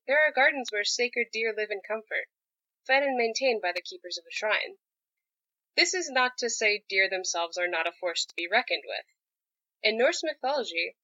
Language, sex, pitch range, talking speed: English, female, 195-280 Hz, 195 wpm